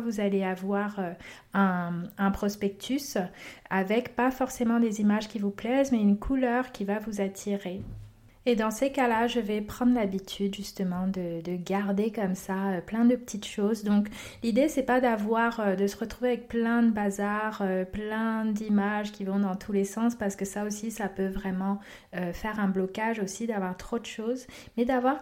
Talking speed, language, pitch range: 180 wpm, French, 195-230 Hz